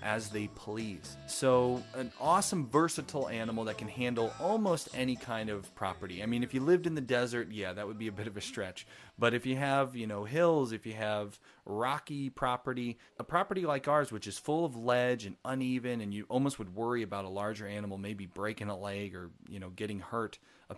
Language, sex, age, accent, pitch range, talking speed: English, male, 30-49, American, 100-130 Hz, 215 wpm